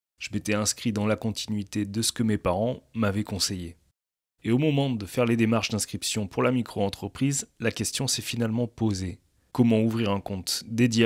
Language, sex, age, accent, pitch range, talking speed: French, male, 30-49, French, 100-120 Hz, 185 wpm